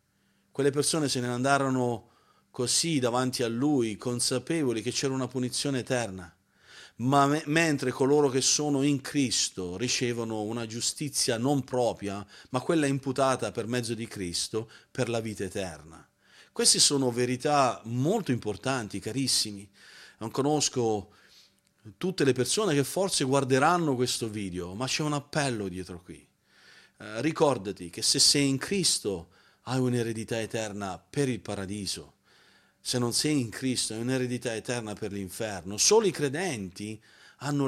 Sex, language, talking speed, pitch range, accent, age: male, Italian, 140 wpm, 110-145 Hz, native, 40-59